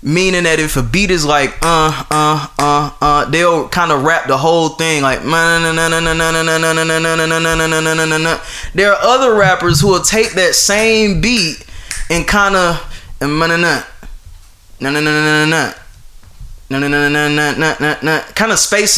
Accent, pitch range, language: American, 135-165 Hz, English